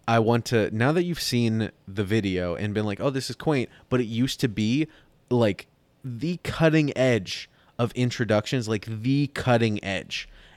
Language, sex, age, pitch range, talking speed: English, male, 20-39, 110-135 Hz, 175 wpm